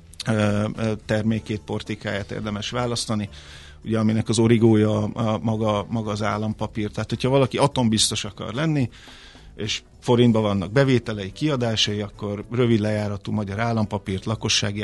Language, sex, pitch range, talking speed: Hungarian, male, 105-130 Hz, 120 wpm